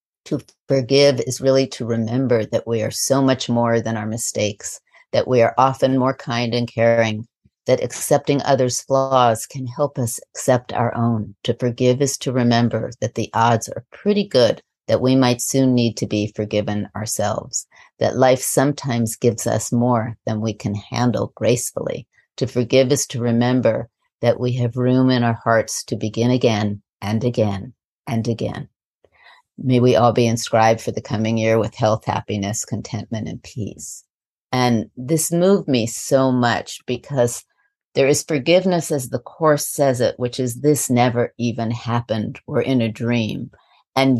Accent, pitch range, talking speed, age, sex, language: American, 115-130 Hz, 170 wpm, 50-69, female, English